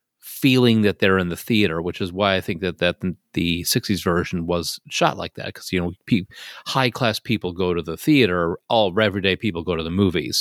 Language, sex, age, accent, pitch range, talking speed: English, male, 30-49, American, 90-105 Hz, 220 wpm